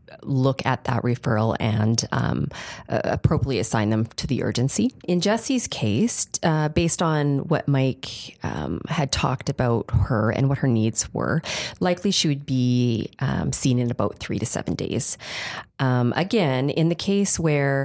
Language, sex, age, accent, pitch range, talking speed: English, female, 30-49, American, 120-150 Hz, 165 wpm